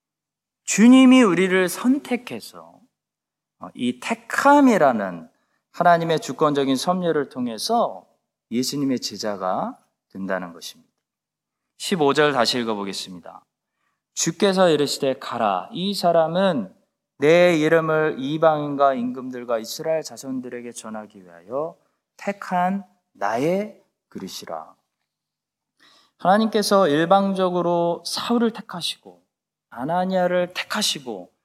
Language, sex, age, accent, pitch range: Korean, male, 20-39, native, 140-210 Hz